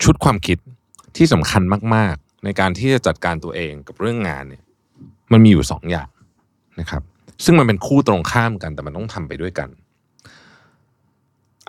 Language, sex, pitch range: Thai, male, 85-115 Hz